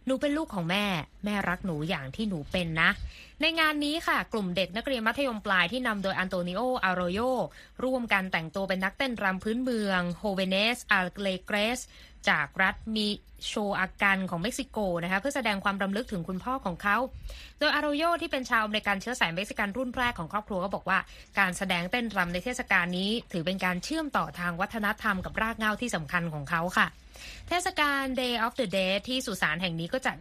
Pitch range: 185-245 Hz